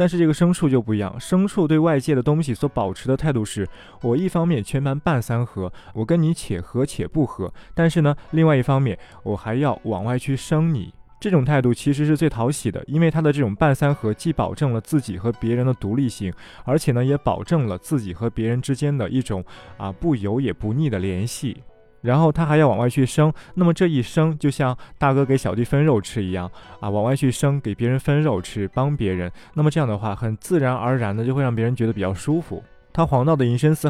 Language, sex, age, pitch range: Chinese, male, 20-39, 115-150 Hz